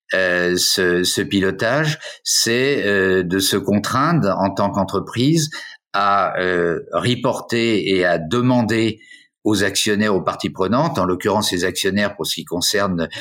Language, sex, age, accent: French, male, 50-69, French